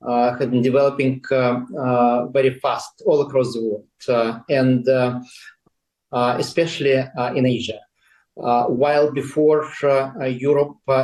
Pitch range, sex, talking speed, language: 125-140 Hz, male, 140 wpm, English